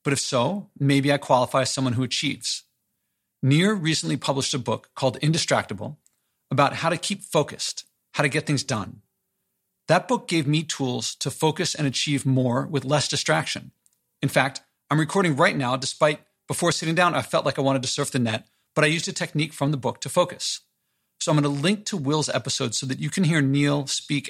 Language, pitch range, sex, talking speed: English, 130-155 Hz, male, 205 wpm